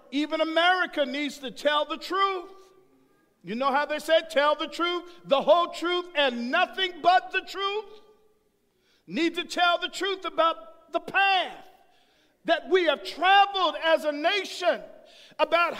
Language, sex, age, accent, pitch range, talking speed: English, male, 50-69, American, 270-360 Hz, 150 wpm